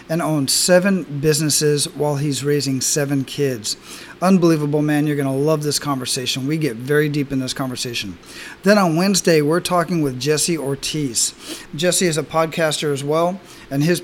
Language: English